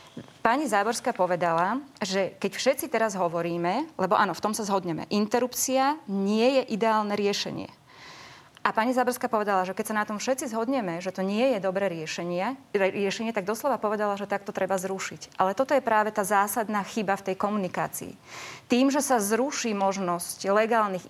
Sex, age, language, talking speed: female, 30-49, Slovak, 170 wpm